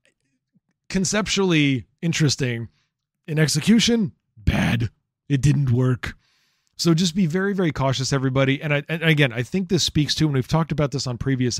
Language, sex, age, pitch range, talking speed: English, male, 30-49, 125-155 Hz, 160 wpm